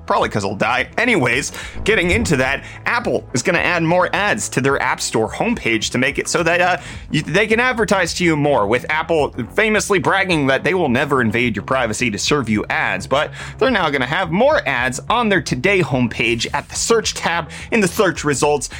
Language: English